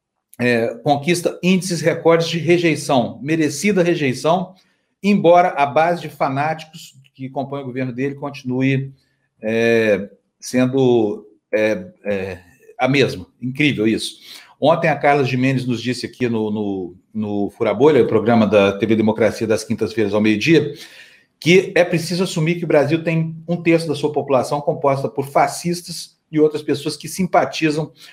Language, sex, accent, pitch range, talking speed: Portuguese, male, Brazilian, 125-160 Hz, 145 wpm